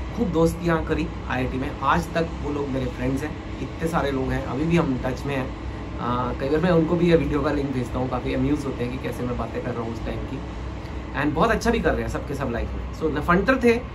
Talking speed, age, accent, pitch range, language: 270 wpm, 30-49, native, 130-180 Hz, Hindi